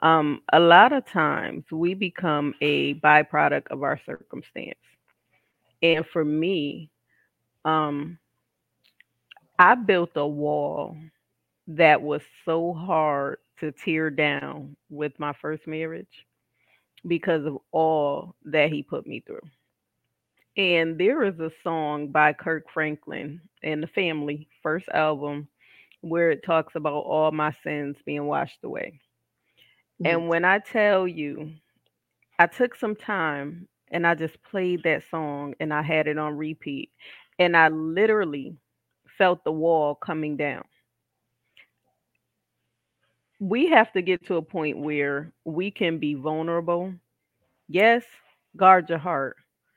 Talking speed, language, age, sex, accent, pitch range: 130 wpm, English, 30-49, female, American, 150-175 Hz